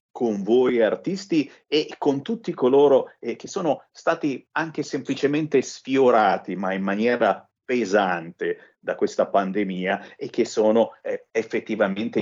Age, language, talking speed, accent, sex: 50-69, Italian, 130 wpm, native, male